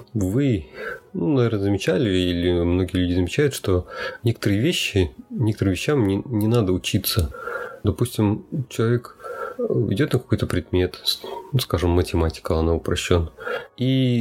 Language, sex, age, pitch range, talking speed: Russian, male, 30-49, 90-120 Hz, 120 wpm